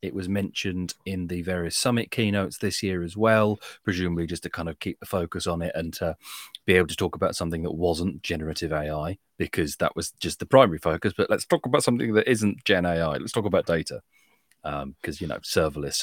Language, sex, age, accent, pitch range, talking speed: English, male, 30-49, British, 85-105 Hz, 220 wpm